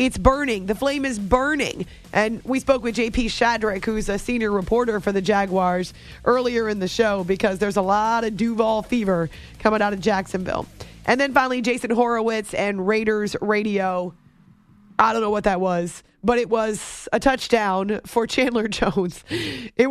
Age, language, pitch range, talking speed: 30-49, English, 185-230 Hz, 170 wpm